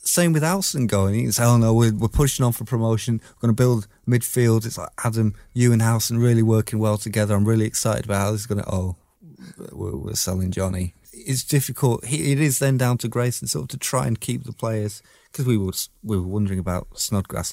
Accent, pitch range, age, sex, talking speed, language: British, 95-120 Hz, 30-49, male, 225 wpm, English